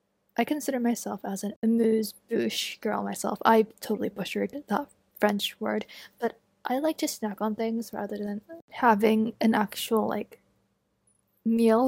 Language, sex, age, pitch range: English, female, 10-29, 210-235 Hz